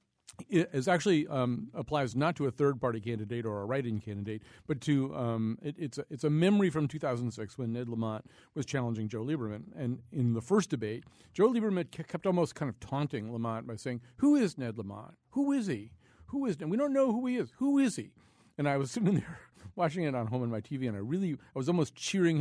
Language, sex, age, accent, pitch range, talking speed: English, male, 40-59, American, 115-170 Hz, 215 wpm